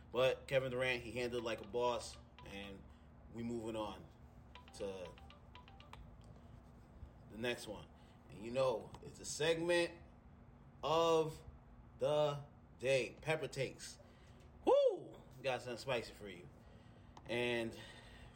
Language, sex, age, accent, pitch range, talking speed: English, male, 30-49, American, 110-130 Hz, 110 wpm